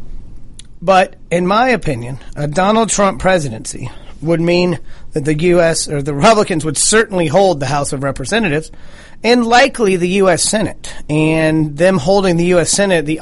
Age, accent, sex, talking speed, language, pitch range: 40-59, American, male, 160 wpm, English, 145-180 Hz